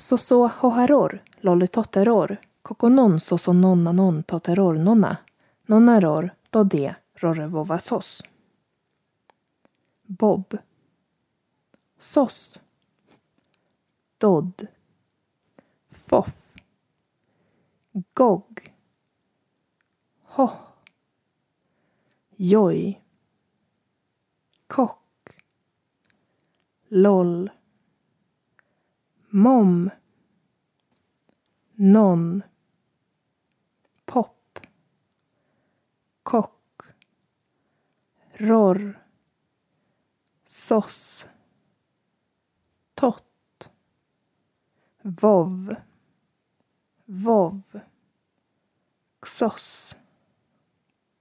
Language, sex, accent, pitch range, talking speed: Swedish, female, native, 180-225 Hz, 45 wpm